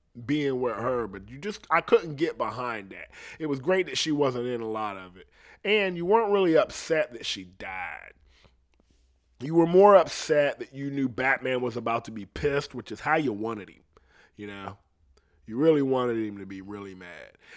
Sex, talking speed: male, 200 wpm